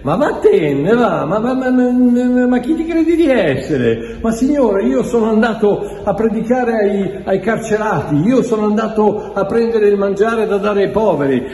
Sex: male